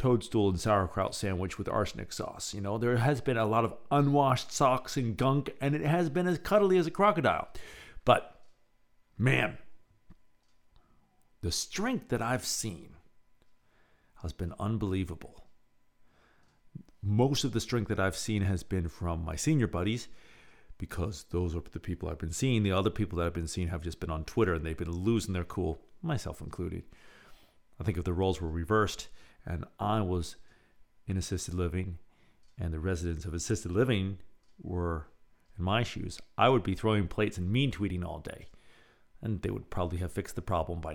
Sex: male